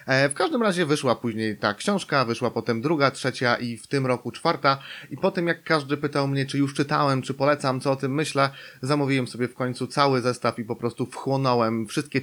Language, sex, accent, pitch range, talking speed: Polish, male, native, 125-140 Hz, 210 wpm